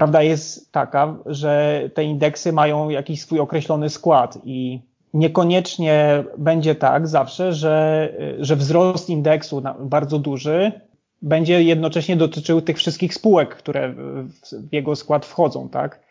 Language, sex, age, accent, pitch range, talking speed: Polish, male, 20-39, native, 135-155 Hz, 125 wpm